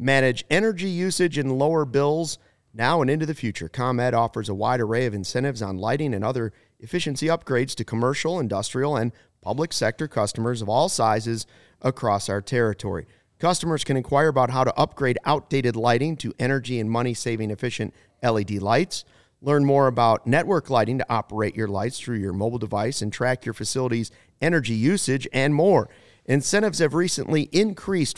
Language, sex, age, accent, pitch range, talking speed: English, male, 30-49, American, 110-140 Hz, 165 wpm